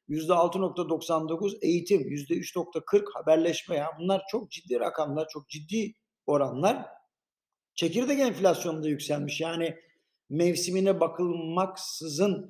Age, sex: 60-79, male